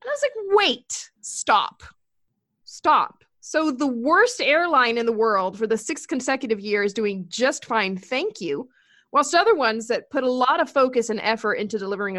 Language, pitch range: English, 210-275 Hz